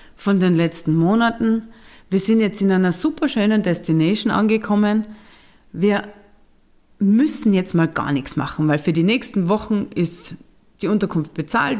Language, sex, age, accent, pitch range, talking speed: German, female, 40-59, German, 160-230 Hz, 140 wpm